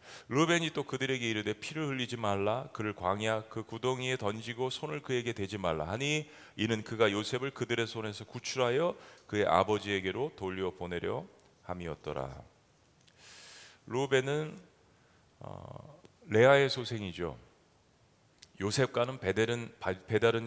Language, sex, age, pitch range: Korean, male, 40-59, 100-135 Hz